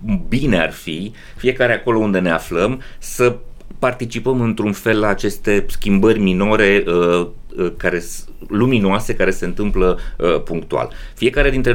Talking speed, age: 130 wpm, 30-49